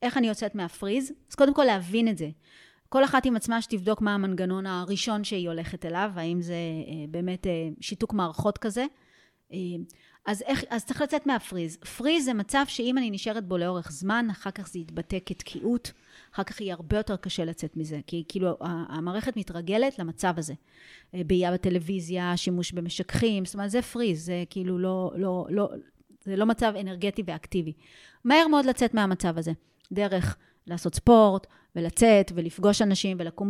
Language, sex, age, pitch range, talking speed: Hebrew, female, 30-49, 180-225 Hz, 165 wpm